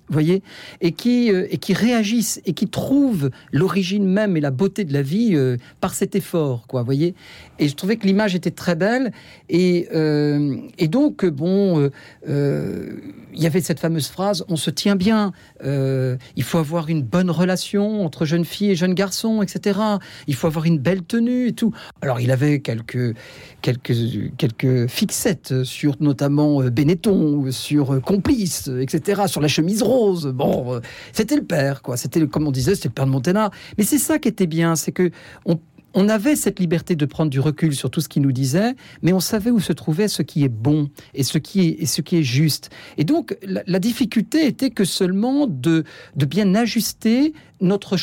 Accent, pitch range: French, 145-205 Hz